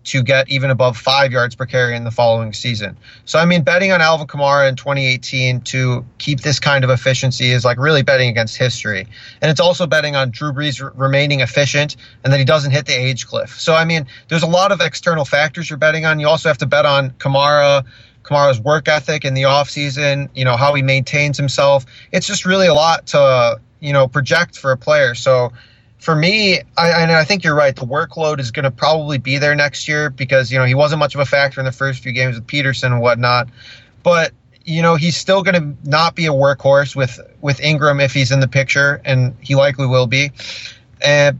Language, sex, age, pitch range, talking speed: English, male, 30-49, 130-150 Hz, 225 wpm